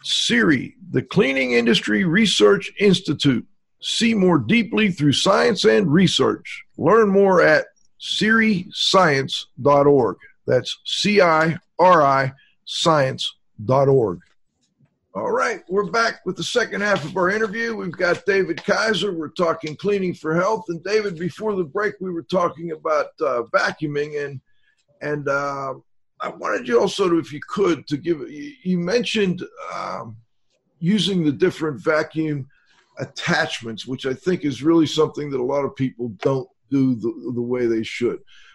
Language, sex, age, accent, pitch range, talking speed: English, male, 50-69, American, 140-185 Hz, 140 wpm